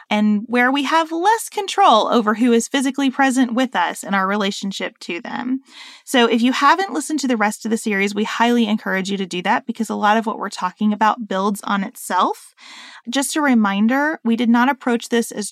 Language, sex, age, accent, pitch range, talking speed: English, female, 30-49, American, 200-245 Hz, 215 wpm